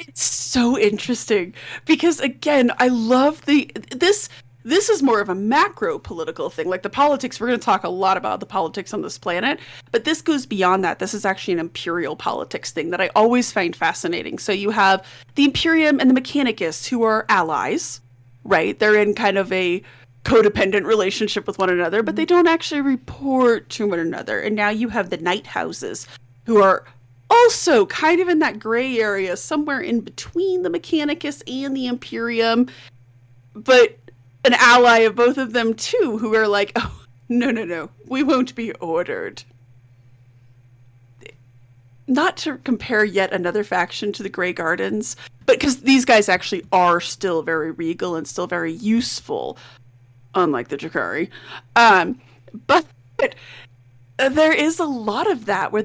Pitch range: 175-270 Hz